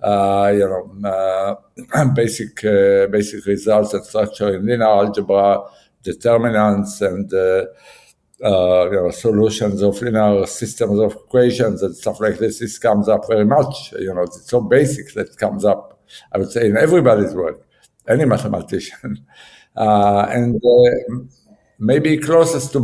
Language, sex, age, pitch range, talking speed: English, male, 60-79, 100-130 Hz, 150 wpm